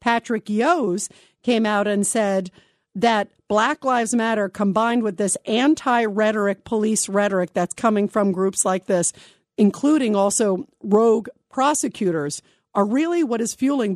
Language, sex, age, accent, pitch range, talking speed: English, female, 50-69, American, 195-245 Hz, 135 wpm